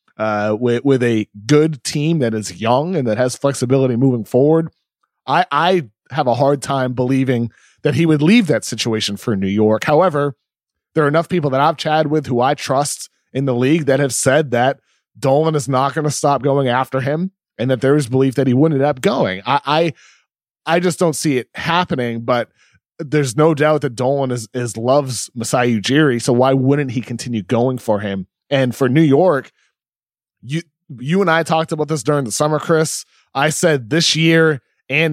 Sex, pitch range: male, 125-155 Hz